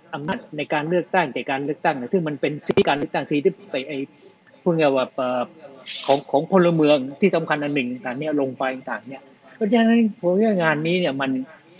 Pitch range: 140-180 Hz